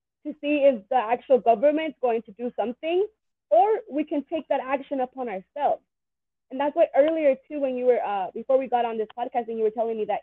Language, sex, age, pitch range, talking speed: English, female, 20-39, 240-300 Hz, 230 wpm